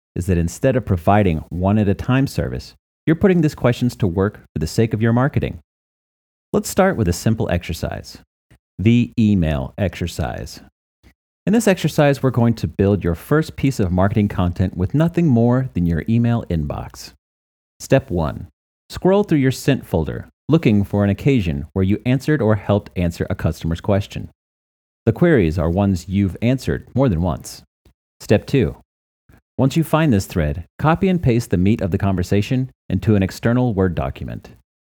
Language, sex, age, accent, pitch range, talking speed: English, male, 40-59, American, 80-120 Hz, 170 wpm